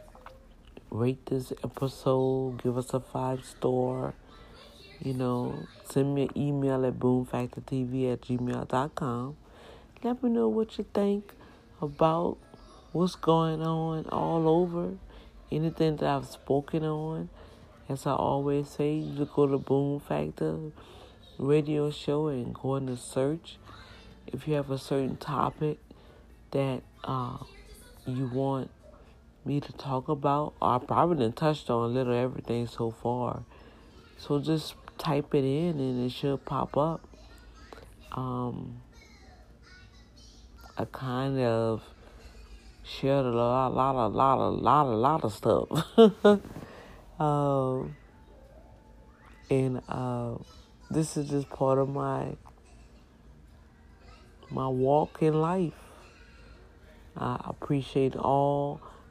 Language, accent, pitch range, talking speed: English, American, 120-145 Hz, 120 wpm